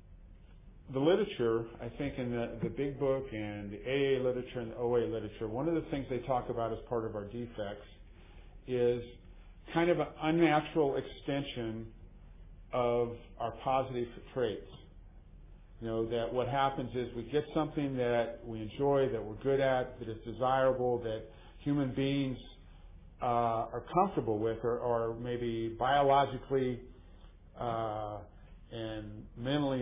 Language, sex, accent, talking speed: English, male, American, 145 wpm